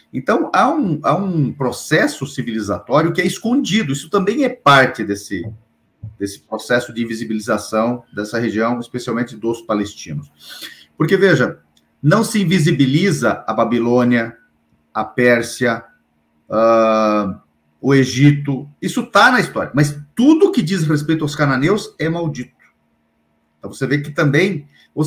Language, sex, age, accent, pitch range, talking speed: Portuguese, male, 40-59, Brazilian, 110-160 Hz, 130 wpm